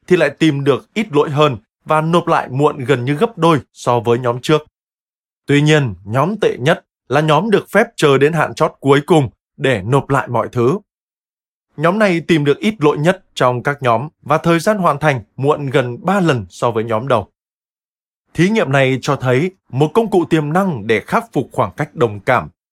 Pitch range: 120-165 Hz